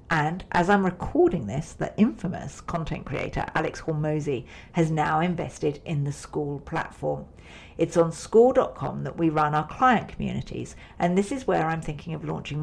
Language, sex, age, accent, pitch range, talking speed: English, female, 50-69, British, 150-205 Hz, 165 wpm